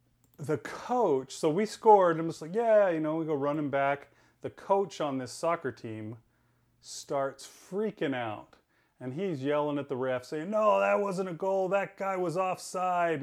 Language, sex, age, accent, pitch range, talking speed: English, male, 30-49, American, 130-185 Hz, 185 wpm